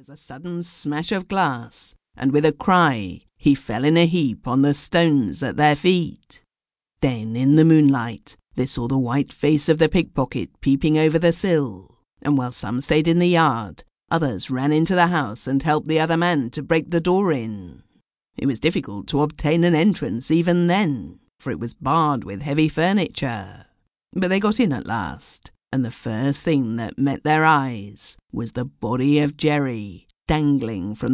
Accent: British